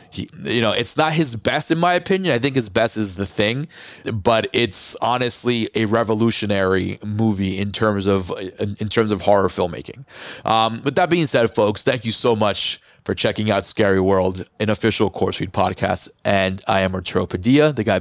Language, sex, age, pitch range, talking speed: English, male, 30-49, 100-115 Hz, 190 wpm